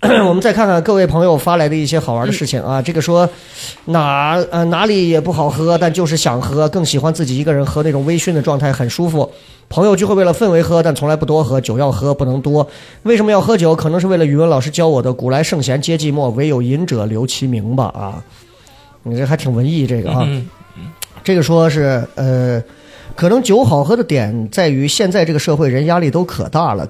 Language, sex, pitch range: Chinese, male, 130-170 Hz